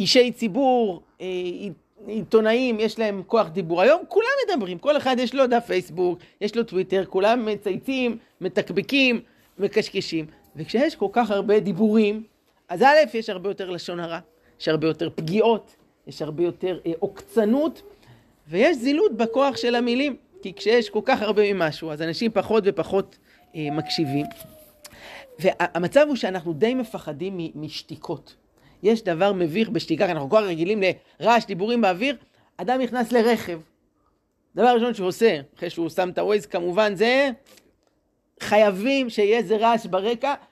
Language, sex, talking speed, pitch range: Hebrew, male, 140 wpm, 180-240 Hz